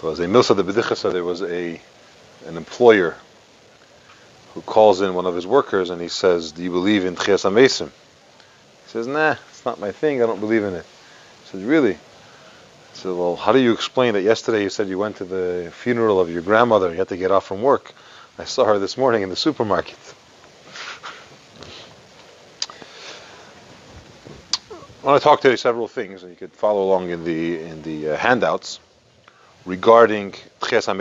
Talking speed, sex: 185 wpm, male